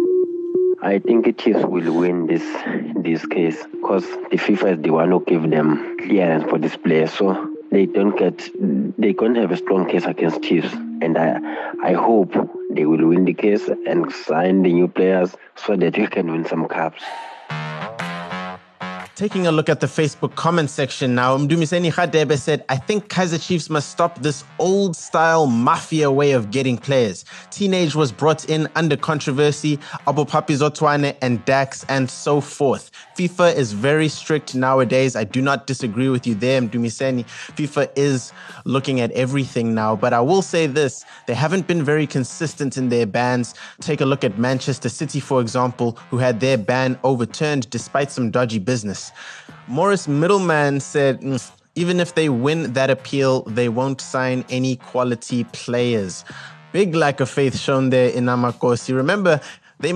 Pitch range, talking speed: 120-155 Hz, 170 wpm